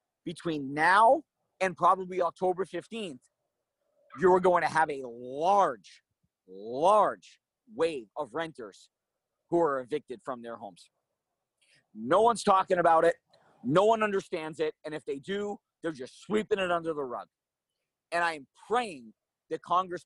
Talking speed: 140 wpm